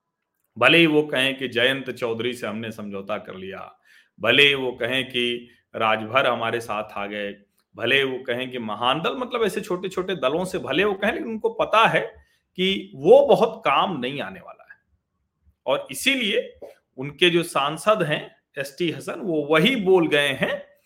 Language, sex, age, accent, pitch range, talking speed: Hindi, male, 40-59, native, 135-200 Hz, 170 wpm